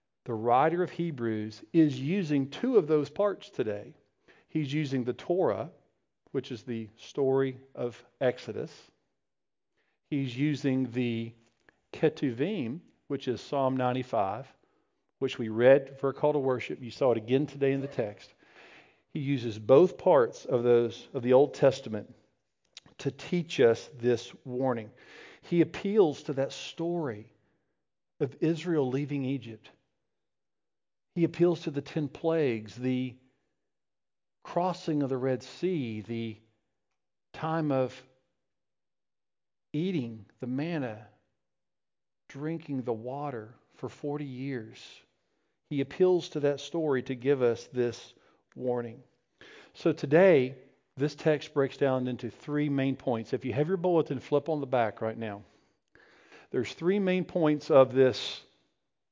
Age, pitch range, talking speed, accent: 50-69, 120-150 Hz, 130 wpm, American